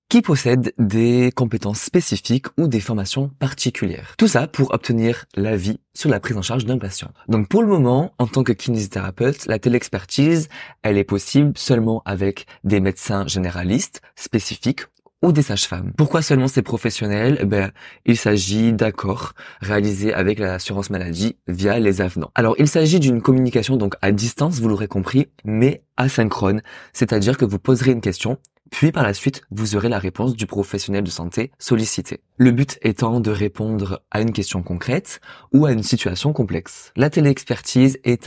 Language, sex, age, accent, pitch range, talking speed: French, male, 20-39, French, 100-130 Hz, 170 wpm